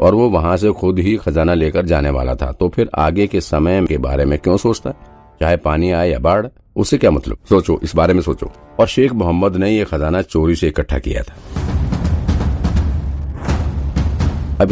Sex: male